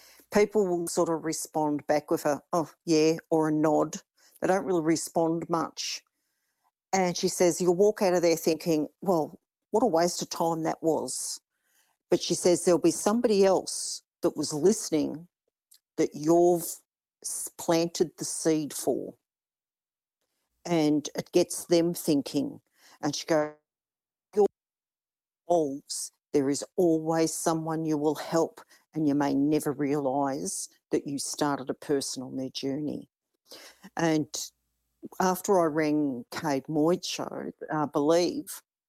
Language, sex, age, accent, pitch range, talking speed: English, female, 50-69, Australian, 150-175 Hz, 135 wpm